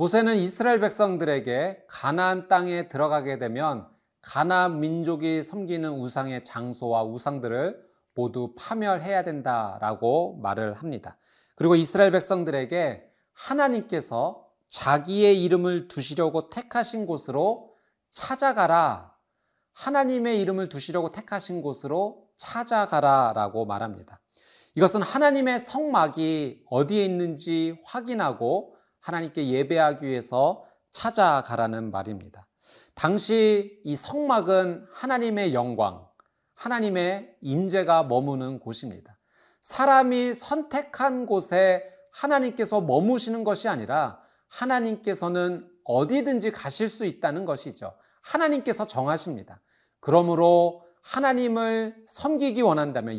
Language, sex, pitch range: Korean, male, 140-220 Hz